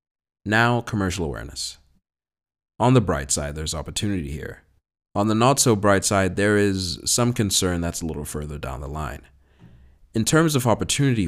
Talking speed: 165 wpm